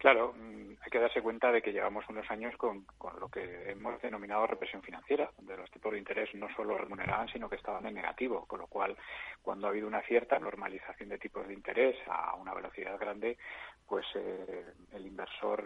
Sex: male